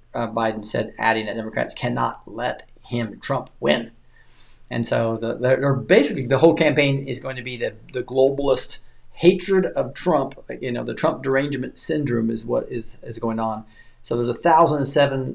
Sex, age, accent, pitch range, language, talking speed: male, 40-59, American, 115-150 Hz, English, 175 wpm